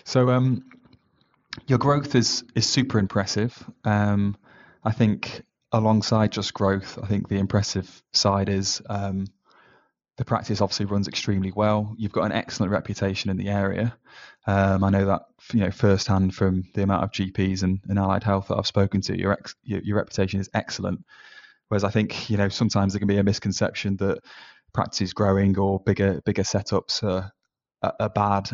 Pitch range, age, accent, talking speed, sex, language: 95-105 Hz, 20-39, British, 180 wpm, male, English